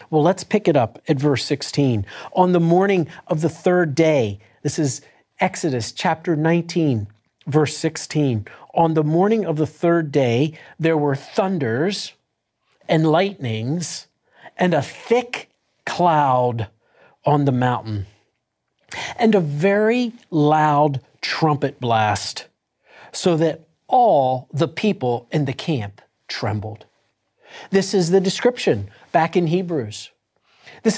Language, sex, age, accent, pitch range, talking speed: German, male, 50-69, American, 135-180 Hz, 125 wpm